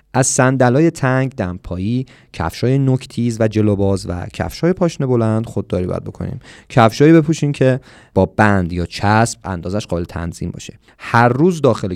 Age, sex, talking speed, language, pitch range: 30-49, male, 145 wpm, Persian, 95-130 Hz